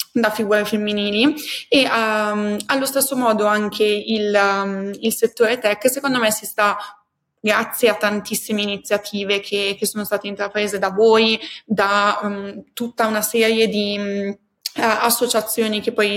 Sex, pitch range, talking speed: female, 205-225 Hz, 145 wpm